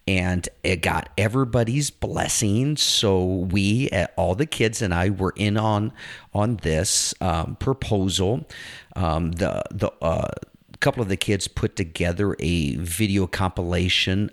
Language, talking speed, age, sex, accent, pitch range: English, 140 wpm, 40-59, male, American, 85-105 Hz